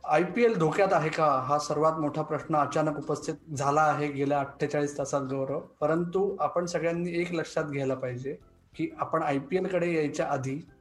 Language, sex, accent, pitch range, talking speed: Marathi, male, native, 150-195 Hz, 185 wpm